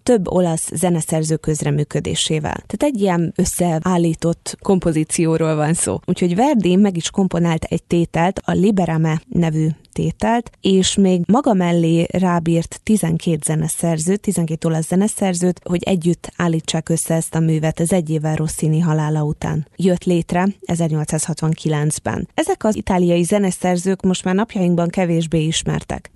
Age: 20-39